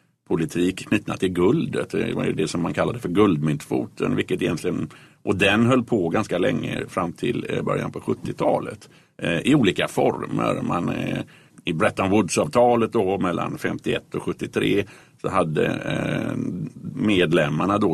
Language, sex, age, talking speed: Swedish, male, 50-69, 125 wpm